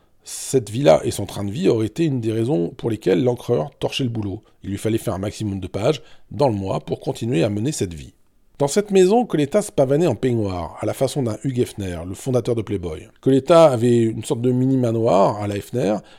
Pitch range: 100-130 Hz